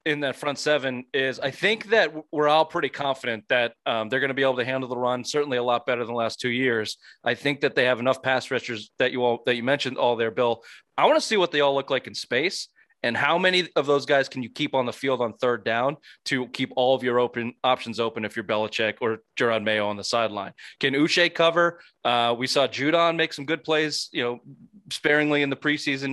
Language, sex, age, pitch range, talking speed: English, male, 20-39, 120-150 Hz, 250 wpm